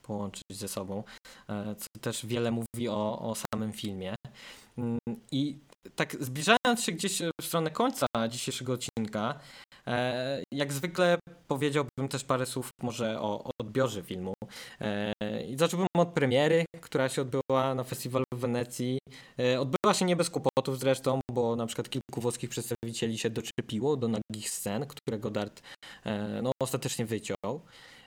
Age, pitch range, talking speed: 20-39, 115-145 Hz, 135 wpm